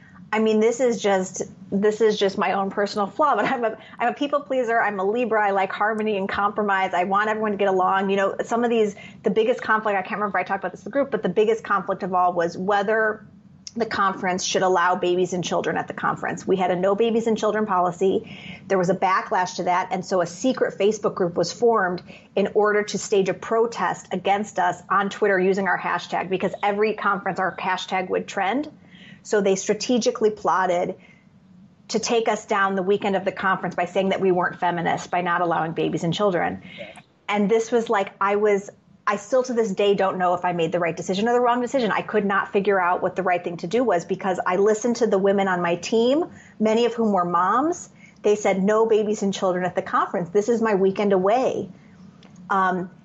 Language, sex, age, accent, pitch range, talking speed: English, female, 30-49, American, 185-215 Hz, 225 wpm